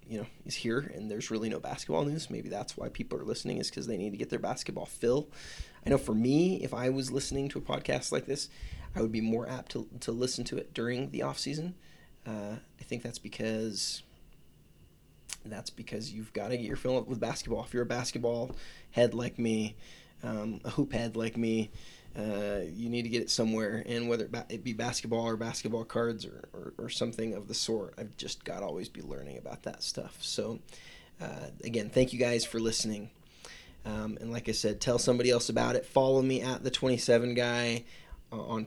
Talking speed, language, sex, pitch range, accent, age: 210 wpm, English, male, 110-125 Hz, American, 20-39